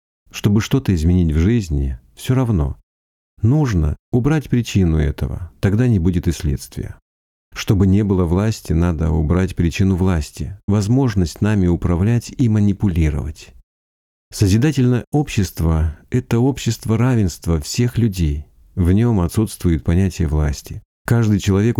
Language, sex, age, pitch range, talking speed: Russian, male, 50-69, 80-110 Hz, 120 wpm